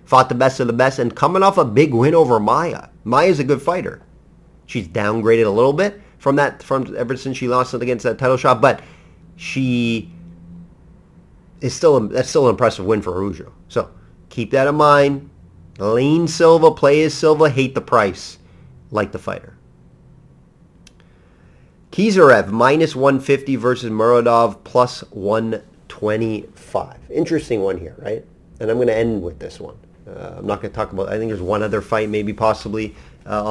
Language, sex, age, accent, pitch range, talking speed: English, male, 30-49, American, 105-140 Hz, 175 wpm